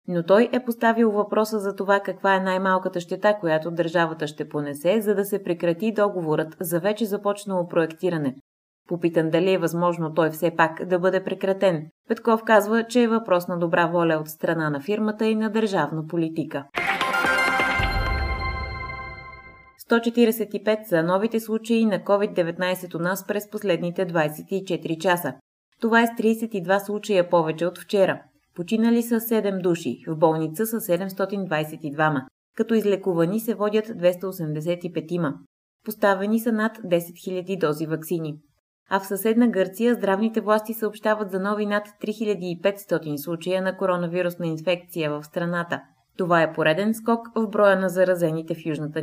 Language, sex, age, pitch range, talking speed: Bulgarian, female, 20-39, 165-210 Hz, 145 wpm